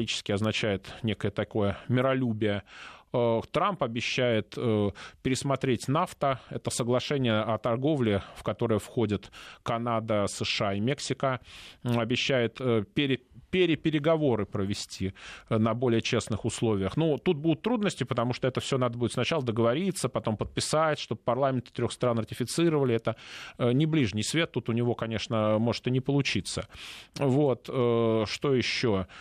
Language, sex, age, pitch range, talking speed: Russian, male, 20-39, 115-150 Hz, 140 wpm